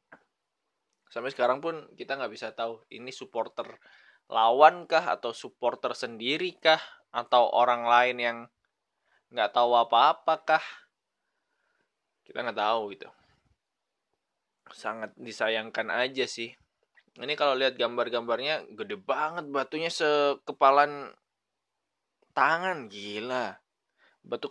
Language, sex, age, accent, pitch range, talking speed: Indonesian, male, 20-39, native, 105-140 Hz, 95 wpm